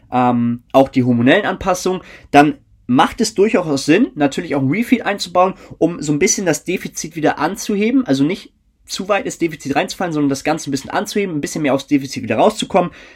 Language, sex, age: German, male, 20-39